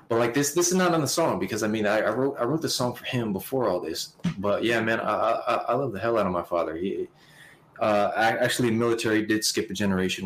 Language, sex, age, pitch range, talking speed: English, male, 20-39, 100-145 Hz, 270 wpm